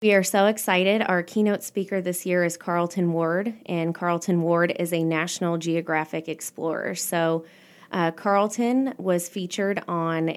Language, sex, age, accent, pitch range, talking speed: English, female, 20-39, American, 160-185 Hz, 150 wpm